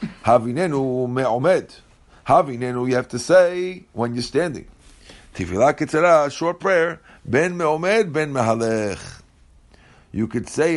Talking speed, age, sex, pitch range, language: 115 wpm, 50-69, male, 115-145 Hz, English